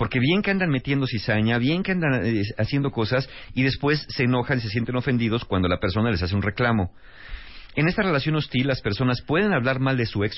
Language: Spanish